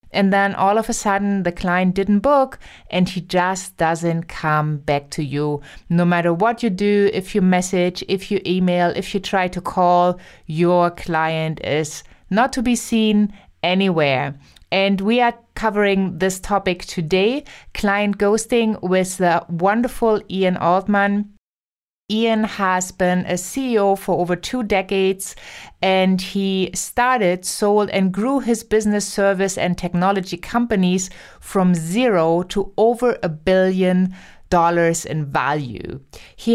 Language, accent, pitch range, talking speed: English, German, 180-205 Hz, 145 wpm